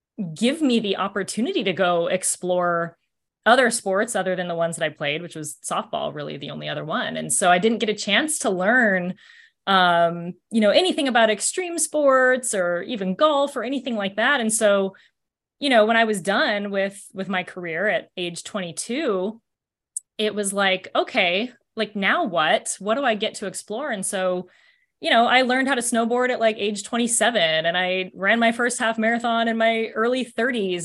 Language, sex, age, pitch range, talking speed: English, female, 20-39, 180-230 Hz, 195 wpm